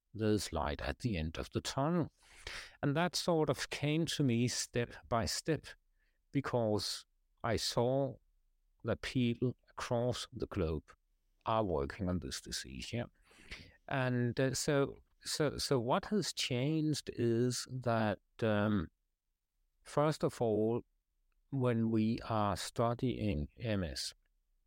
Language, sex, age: English, male, 60-79